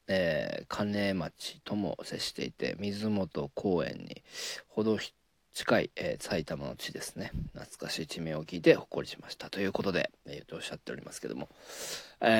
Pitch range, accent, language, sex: 90-110 Hz, native, Japanese, male